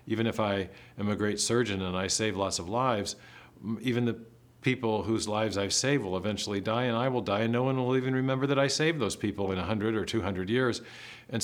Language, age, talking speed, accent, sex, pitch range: English, 50-69, 230 wpm, American, male, 95-115 Hz